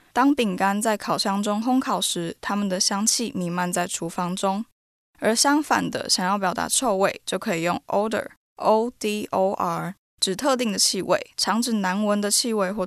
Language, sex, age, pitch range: Chinese, female, 10-29, 185-230 Hz